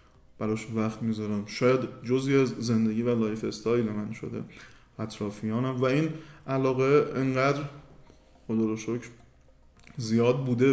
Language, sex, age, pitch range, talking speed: Persian, male, 20-39, 110-130 Hz, 110 wpm